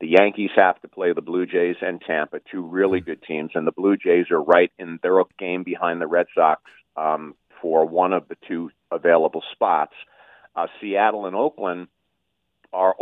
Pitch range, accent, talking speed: 85-105 Hz, American, 185 wpm